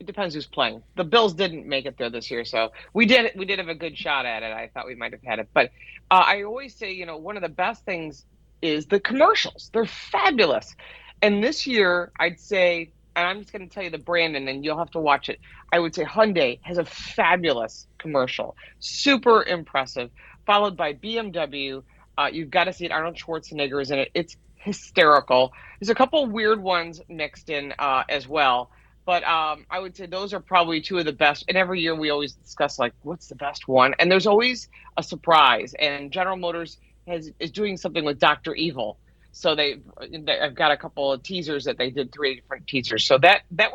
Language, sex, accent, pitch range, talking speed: English, female, American, 145-190 Hz, 220 wpm